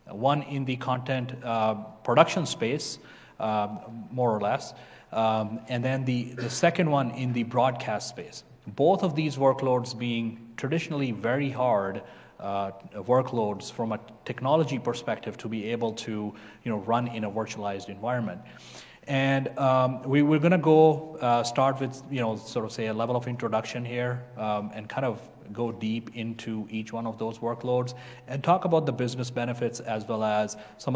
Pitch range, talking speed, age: 110-130 Hz, 175 wpm, 30-49